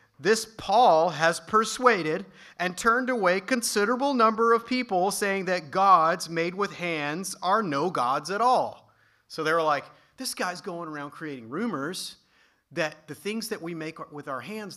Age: 30-49